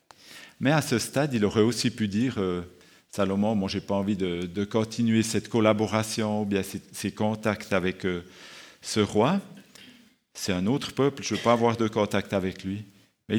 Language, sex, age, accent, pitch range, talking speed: French, male, 50-69, French, 100-120 Hz, 195 wpm